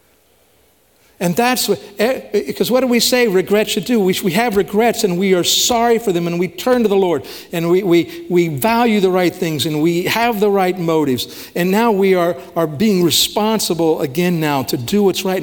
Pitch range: 135-210 Hz